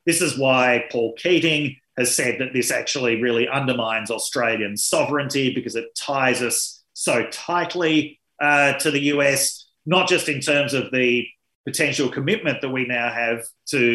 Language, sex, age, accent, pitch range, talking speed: English, male, 30-49, Australian, 120-150 Hz, 160 wpm